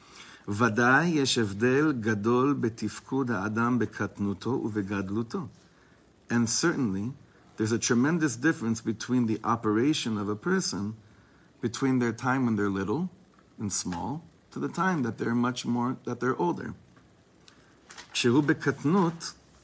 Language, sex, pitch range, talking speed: English, male, 110-135 Hz, 110 wpm